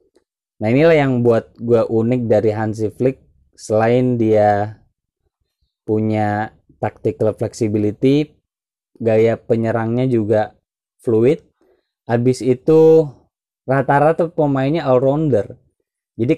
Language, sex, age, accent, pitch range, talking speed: Indonesian, male, 20-39, native, 110-135 Hz, 90 wpm